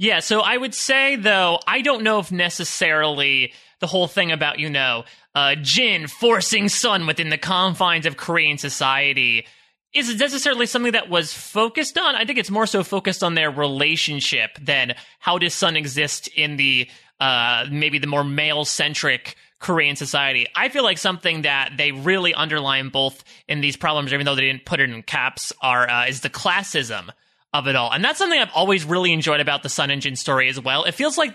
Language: English